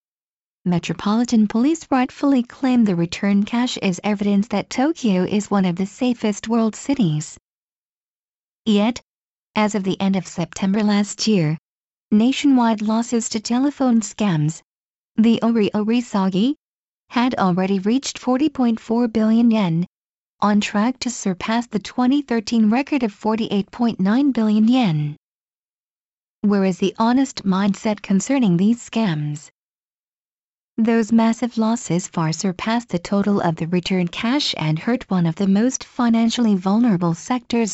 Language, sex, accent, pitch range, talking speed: English, female, American, 195-240 Hz, 125 wpm